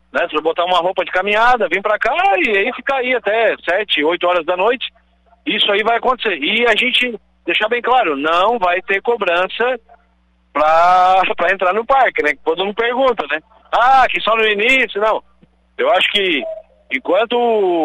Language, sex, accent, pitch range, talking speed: Portuguese, male, Brazilian, 165-225 Hz, 190 wpm